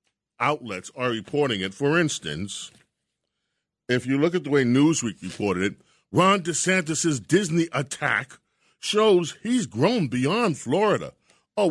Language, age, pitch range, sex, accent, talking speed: English, 40-59, 130-170 Hz, male, American, 130 wpm